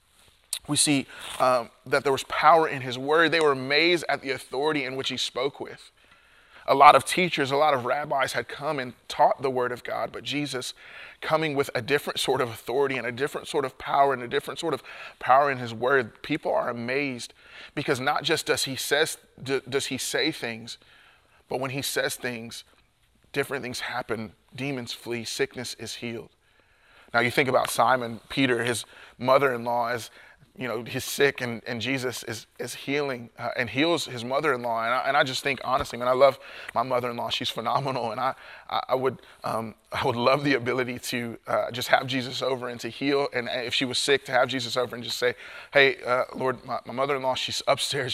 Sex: male